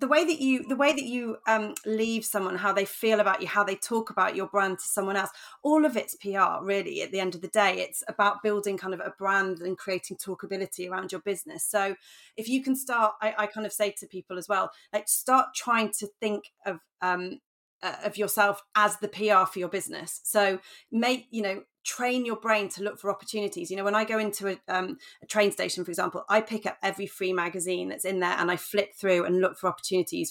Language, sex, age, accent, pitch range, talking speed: English, female, 30-49, British, 185-215 Hz, 240 wpm